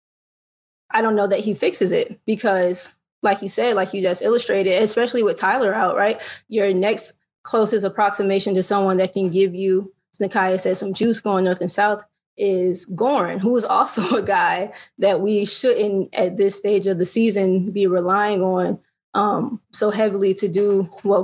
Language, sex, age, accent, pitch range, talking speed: English, female, 20-39, American, 190-210 Hz, 180 wpm